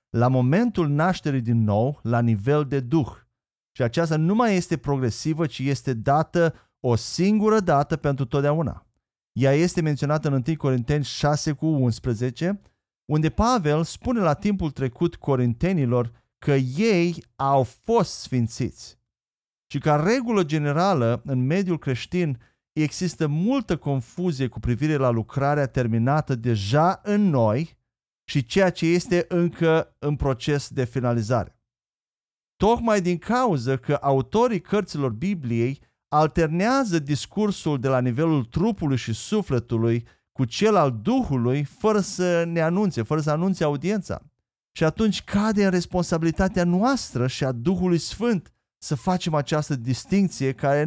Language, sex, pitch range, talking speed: Romanian, male, 130-180 Hz, 130 wpm